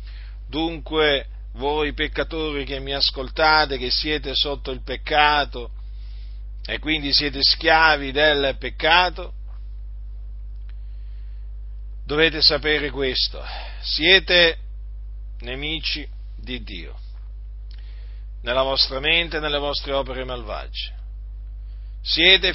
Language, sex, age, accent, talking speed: Italian, male, 50-69, native, 90 wpm